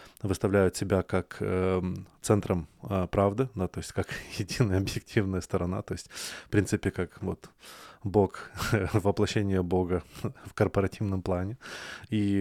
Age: 20-39